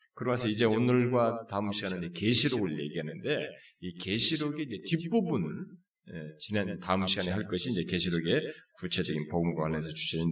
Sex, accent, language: male, native, Korean